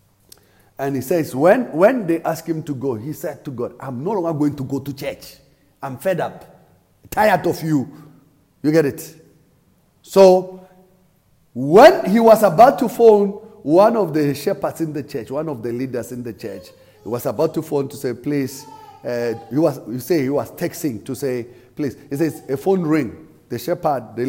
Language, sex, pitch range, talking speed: English, male, 115-165 Hz, 195 wpm